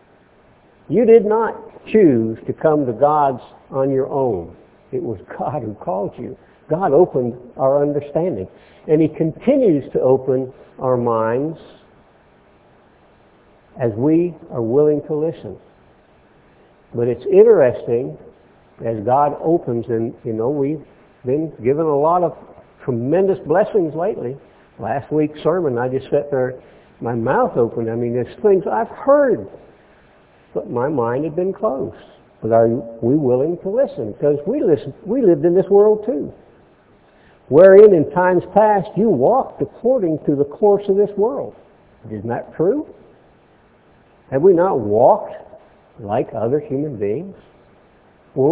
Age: 60-79